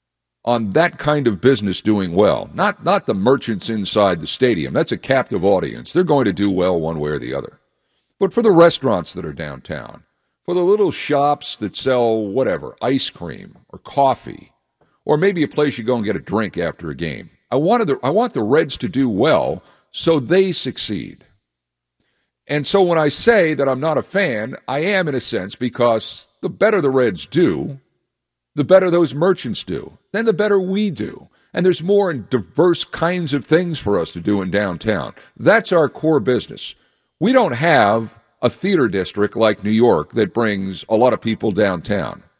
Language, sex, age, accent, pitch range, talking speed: English, male, 60-79, American, 105-160 Hz, 195 wpm